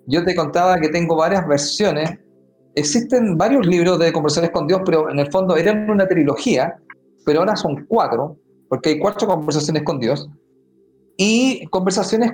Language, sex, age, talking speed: Spanish, male, 40-59, 160 wpm